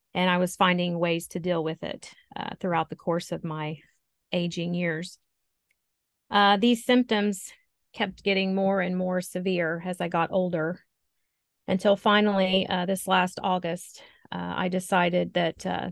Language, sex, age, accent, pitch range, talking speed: English, female, 40-59, American, 175-195 Hz, 155 wpm